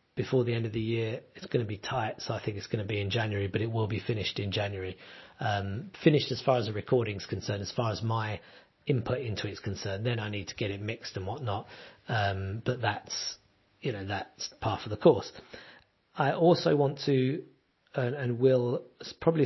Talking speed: 215 wpm